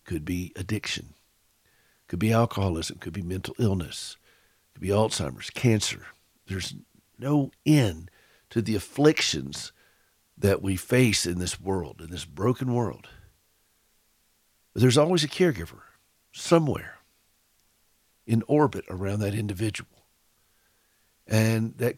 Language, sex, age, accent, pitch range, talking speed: English, male, 60-79, American, 100-135 Hz, 115 wpm